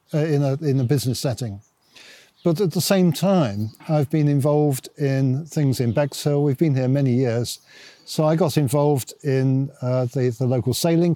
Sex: male